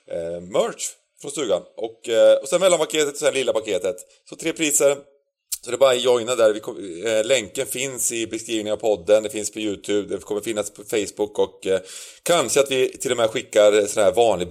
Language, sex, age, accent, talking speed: Swedish, male, 30-49, native, 215 wpm